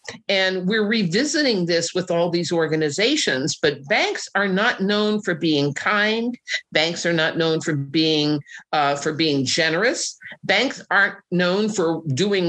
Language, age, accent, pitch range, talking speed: English, 50-69, American, 150-210 Hz, 150 wpm